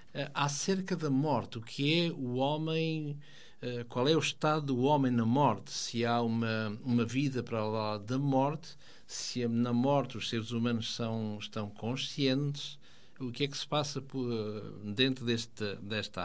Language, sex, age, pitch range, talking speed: Portuguese, male, 60-79, 115-145 Hz, 175 wpm